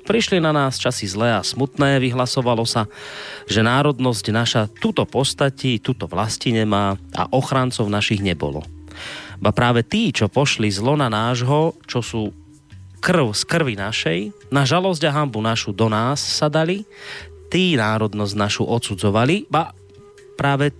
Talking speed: 145 wpm